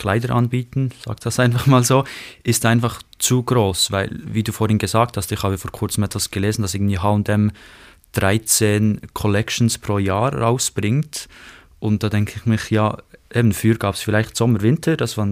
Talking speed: 180 wpm